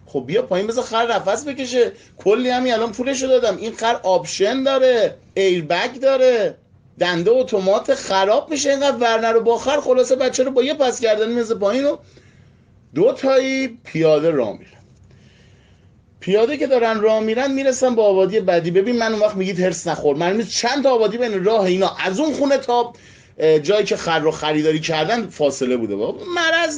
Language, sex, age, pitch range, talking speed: Persian, male, 30-49, 190-255 Hz, 175 wpm